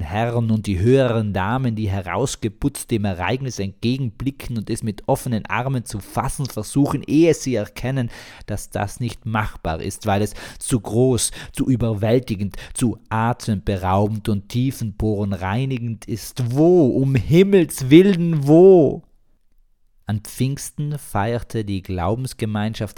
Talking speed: 125 wpm